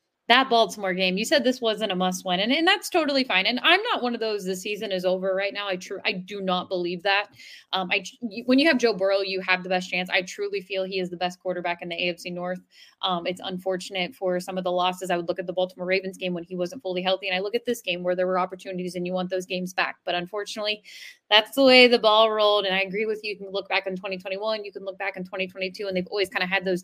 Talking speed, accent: 285 wpm, American